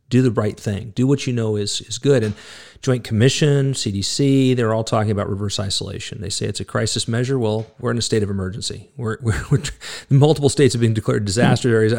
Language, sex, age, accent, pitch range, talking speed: English, male, 40-59, American, 105-130 Hz, 220 wpm